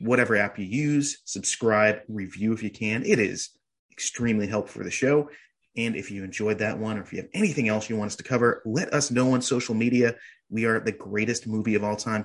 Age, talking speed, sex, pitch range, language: 30-49, 230 wpm, male, 105-130 Hz, English